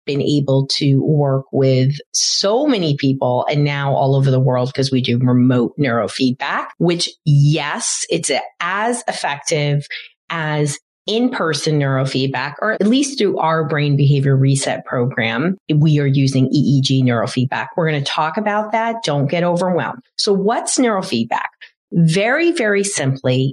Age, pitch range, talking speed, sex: 40-59, 140-195 Hz, 145 wpm, female